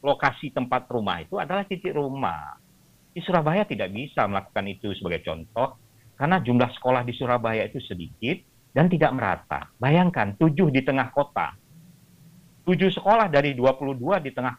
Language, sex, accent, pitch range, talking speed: Indonesian, male, native, 120-175 Hz, 150 wpm